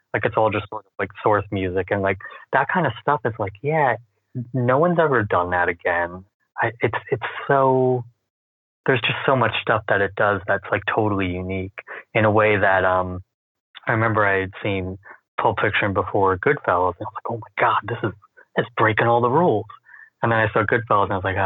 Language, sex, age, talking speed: English, male, 30-49, 215 wpm